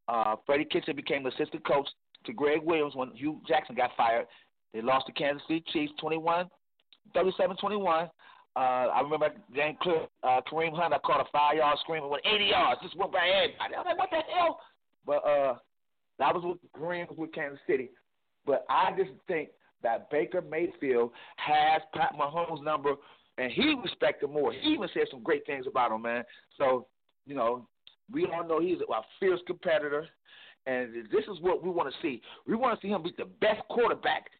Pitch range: 150-230 Hz